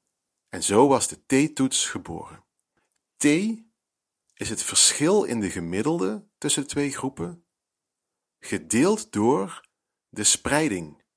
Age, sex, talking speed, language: 40-59, male, 115 wpm, Dutch